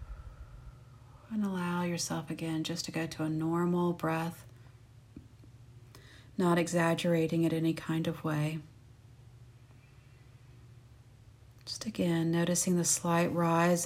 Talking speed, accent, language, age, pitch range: 105 wpm, American, English, 40-59, 120-170 Hz